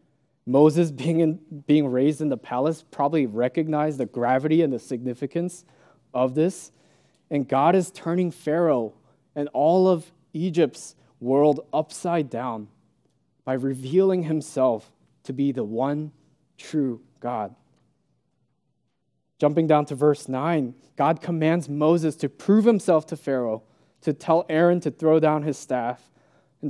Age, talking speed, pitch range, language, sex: 20-39, 135 wpm, 130-160 Hz, English, male